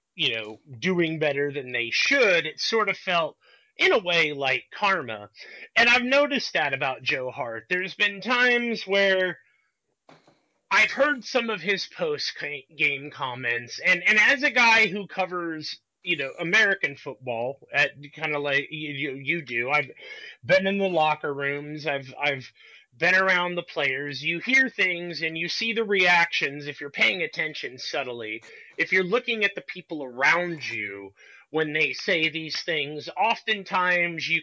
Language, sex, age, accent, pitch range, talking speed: English, male, 30-49, American, 145-200 Hz, 160 wpm